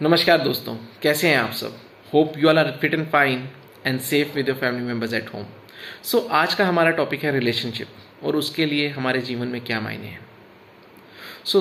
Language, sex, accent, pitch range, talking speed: Hindi, male, native, 125-155 Hz, 195 wpm